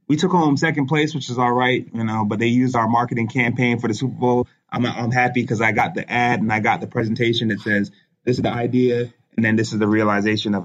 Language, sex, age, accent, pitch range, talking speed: English, male, 30-49, American, 105-125 Hz, 265 wpm